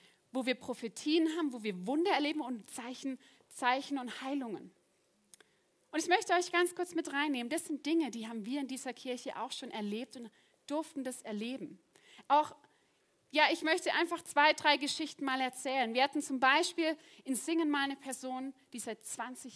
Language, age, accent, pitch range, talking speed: German, 30-49, German, 230-290 Hz, 180 wpm